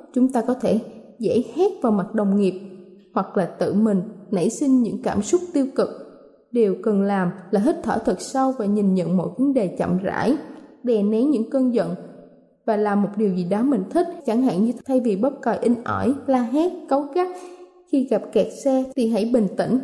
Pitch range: 210-270 Hz